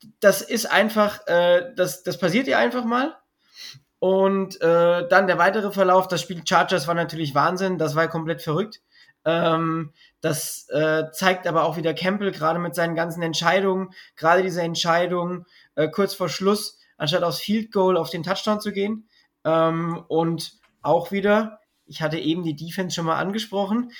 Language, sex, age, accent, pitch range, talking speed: German, male, 20-39, German, 160-190 Hz, 170 wpm